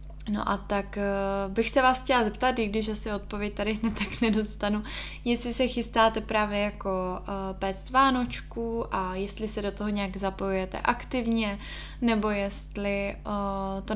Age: 20-39